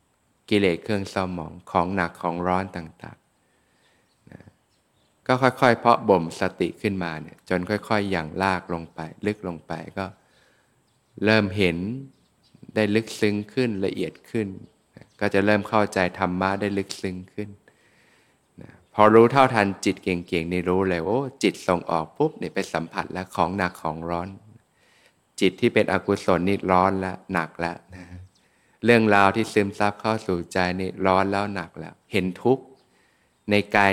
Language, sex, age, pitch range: Thai, male, 20-39, 90-105 Hz